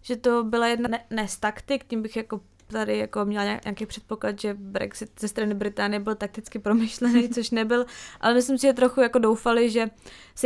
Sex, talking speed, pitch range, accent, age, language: female, 200 wpm, 205-240 Hz, native, 20-39, Czech